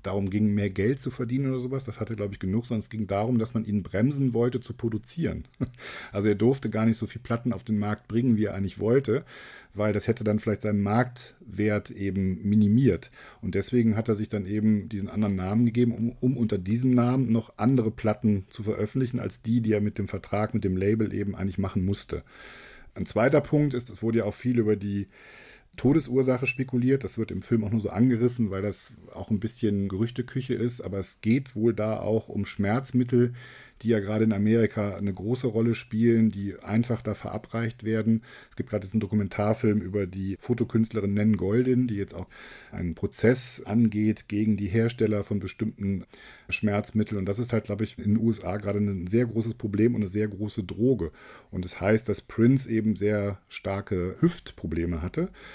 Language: German